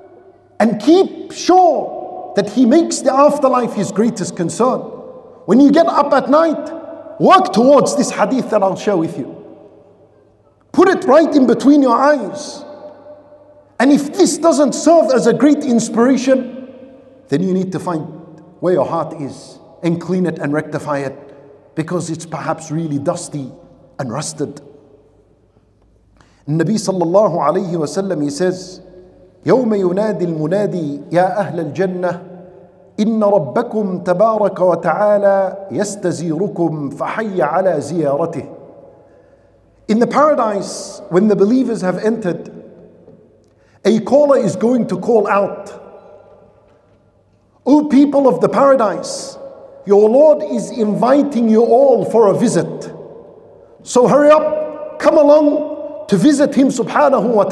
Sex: male